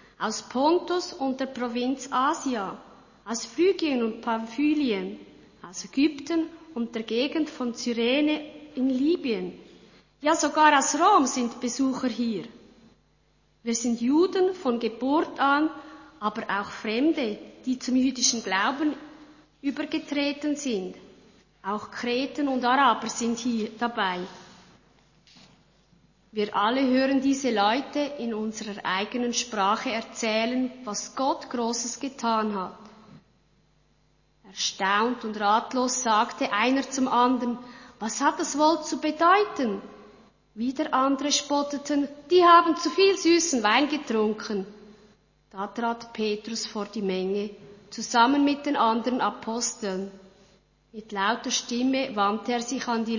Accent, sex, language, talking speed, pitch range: Swiss, female, German, 120 wpm, 215-285 Hz